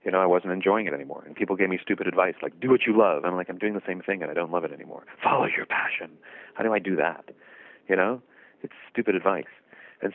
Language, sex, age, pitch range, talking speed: English, male, 30-49, 85-100 Hz, 265 wpm